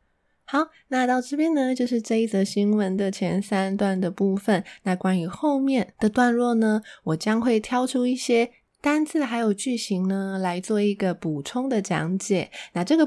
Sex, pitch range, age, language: female, 190-255 Hz, 20-39, Chinese